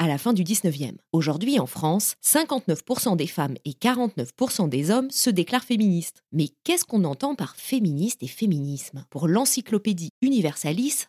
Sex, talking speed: female, 155 wpm